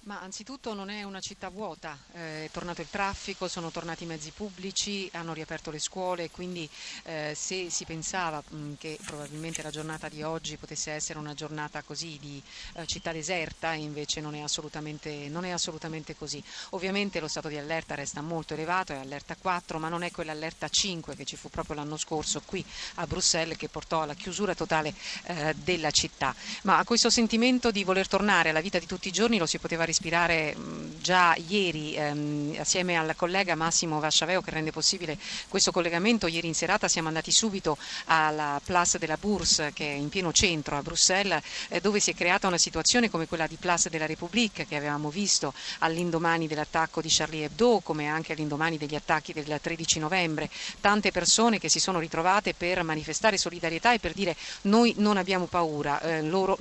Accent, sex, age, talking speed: native, female, 40-59, 185 wpm